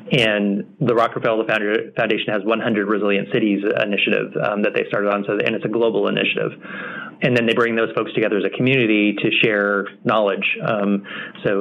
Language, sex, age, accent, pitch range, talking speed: English, male, 30-49, American, 100-110 Hz, 180 wpm